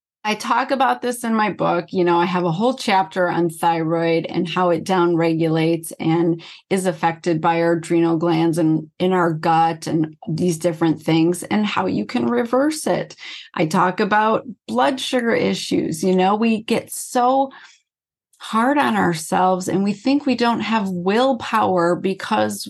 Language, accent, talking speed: English, American, 170 wpm